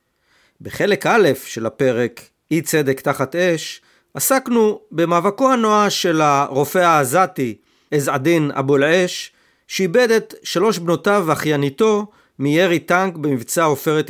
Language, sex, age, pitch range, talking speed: Hebrew, male, 40-59, 130-190 Hz, 110 wpm